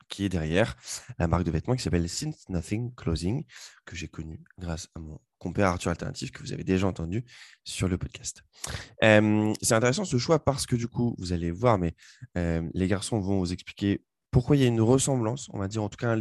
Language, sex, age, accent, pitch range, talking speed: French, male, 20-39, French, 90-115 Hz, 225 wpm